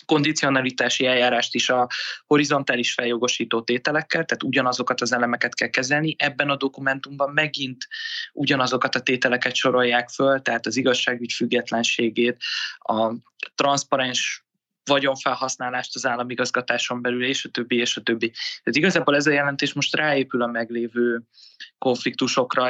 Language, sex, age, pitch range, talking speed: Hungarian, male, 20-39, 120-140 Hz, 125 wpm